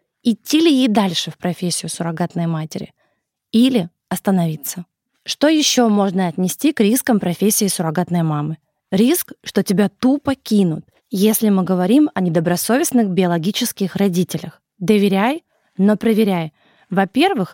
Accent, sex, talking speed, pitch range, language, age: native, female, 120 wpm, 180-230 Hz, Russian, 20-39